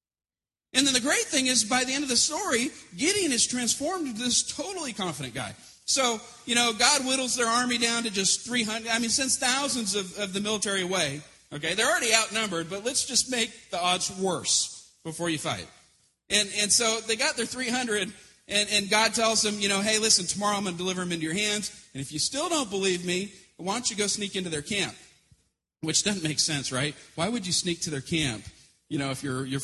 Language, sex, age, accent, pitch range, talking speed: English, male, 40-59, American, 175-230 Hz, 225 wpm